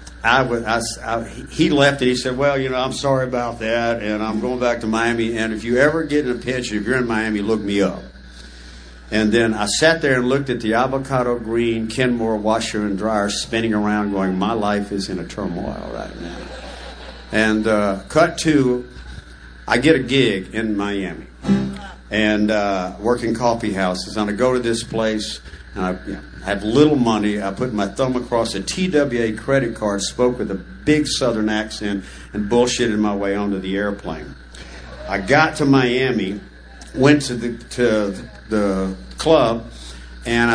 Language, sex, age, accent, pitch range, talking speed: English, male, 60-79, American, 100-130 Hz, 185 wpm